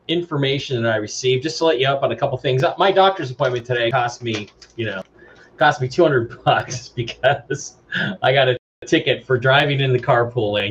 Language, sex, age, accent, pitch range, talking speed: English, male, 30-49, American, 125-165 Hz, 220 wpm